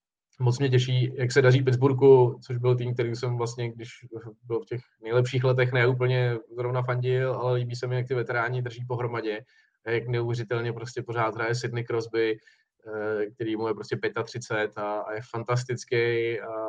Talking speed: 175 wpm